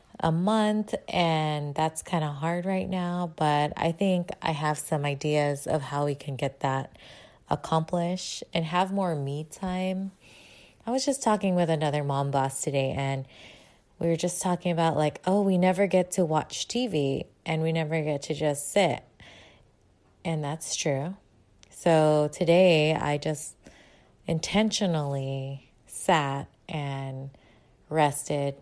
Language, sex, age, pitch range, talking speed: English, female, 20-39, 145-175 Hz, 145 wpm